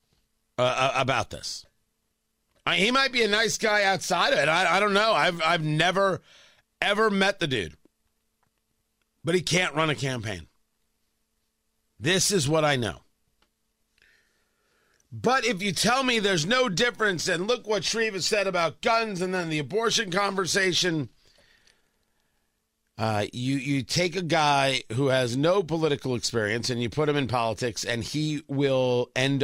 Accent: American